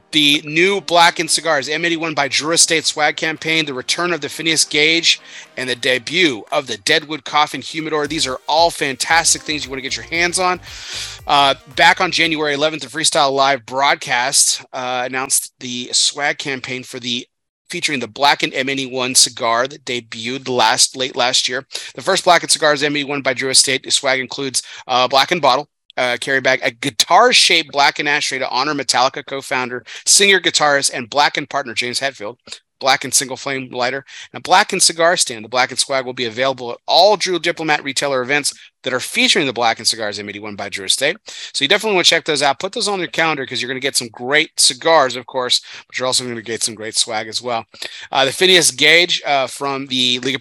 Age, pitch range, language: 30-49, 125-160 Hz, English